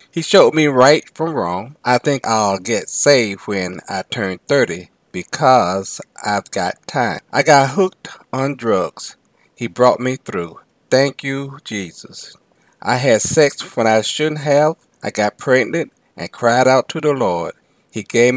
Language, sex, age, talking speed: English, male, 40-59, 160 wpm